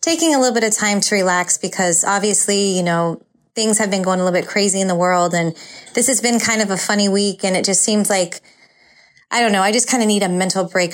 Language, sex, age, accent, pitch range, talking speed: English, female, 20-39, American, 190-235 Hz, 265 wpm